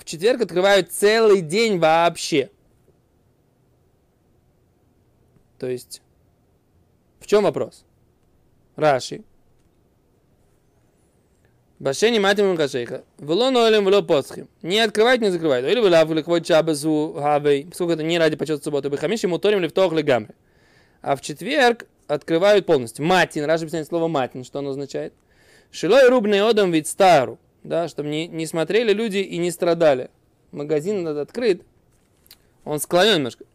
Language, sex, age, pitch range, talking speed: Russian, male, 20-39, 150-205 Hz, 120 wpm